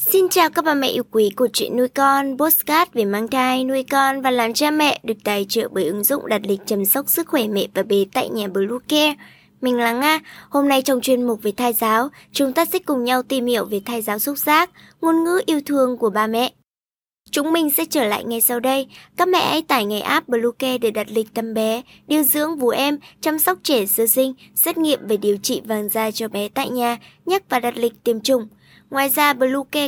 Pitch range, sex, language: 230-300 Hz, male, Vietnamese